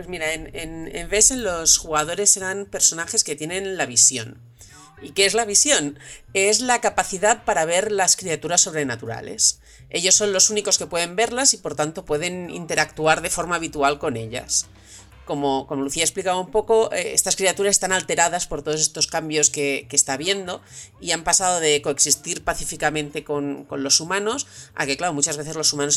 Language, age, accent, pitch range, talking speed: Spanish, 40-59, Spanish, 140-190 Hz, 190 wpm